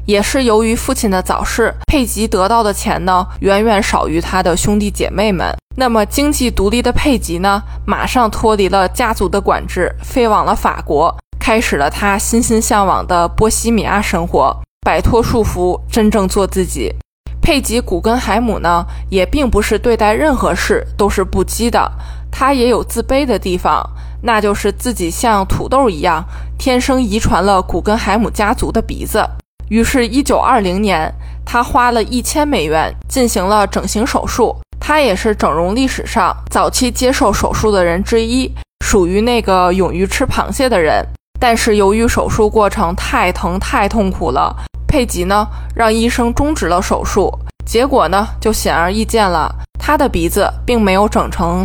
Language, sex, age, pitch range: Chinese, female, 20-39, 185-235 Hz